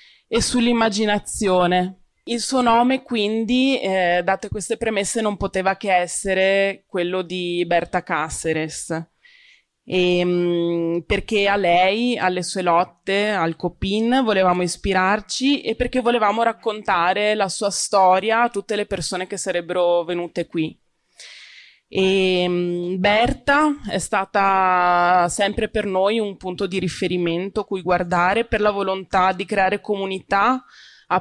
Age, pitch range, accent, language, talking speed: 20-39, 180-225 Hz, native, Italian, 120 wpm